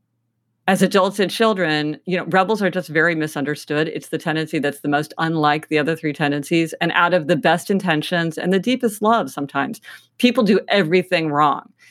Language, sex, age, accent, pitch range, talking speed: English, female, 50-69, American, 155-200 Hz, 185 wpm